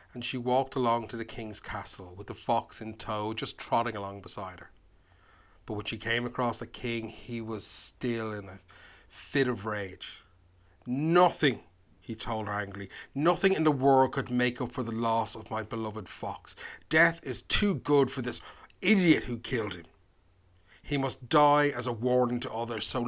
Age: 30-49